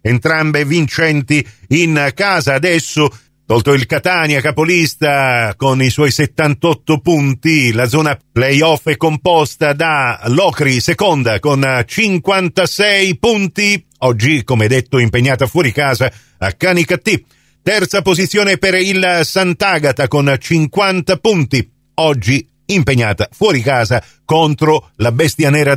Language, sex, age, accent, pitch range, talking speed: Italian, male, 50-69, native, 120-160 Hz, 115 wpm